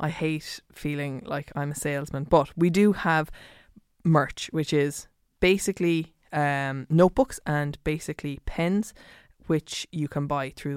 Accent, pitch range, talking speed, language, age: Irish, 145-170 Hz, 140 wpm, English, 20-39